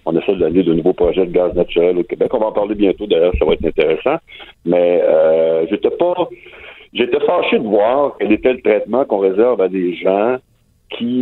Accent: French